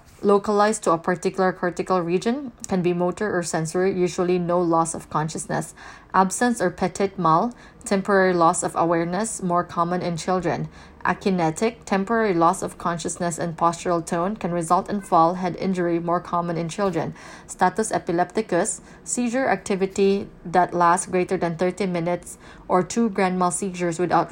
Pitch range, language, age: 175-195 Hz, English, 20-39